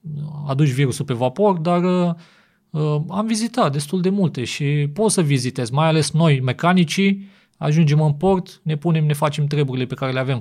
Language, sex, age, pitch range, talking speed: Romanian, male, 30-49, 125-160 Hz, 180 wpm